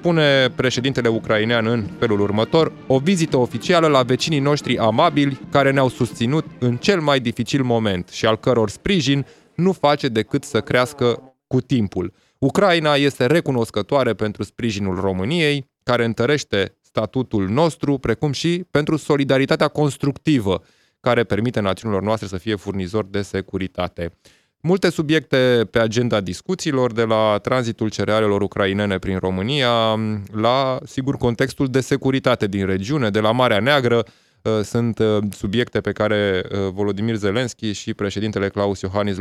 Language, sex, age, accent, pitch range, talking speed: Romanian, male, 20-39, native, 100-135 Hz, 135 wpm